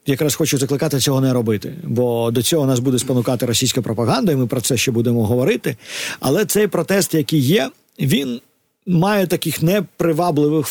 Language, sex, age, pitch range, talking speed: Ukrainian, male, 50-69, 140-175 Hz, 170 wpm